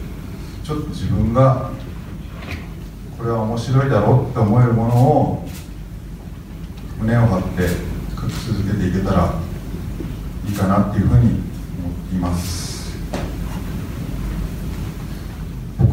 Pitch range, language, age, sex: 95-130 Hz, Japanese, 40-59, male